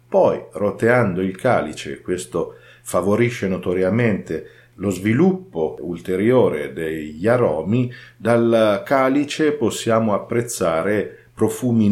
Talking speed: 85 wpm